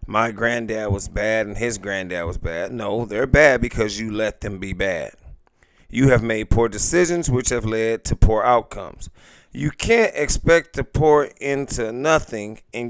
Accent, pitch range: American, 110-140 Hz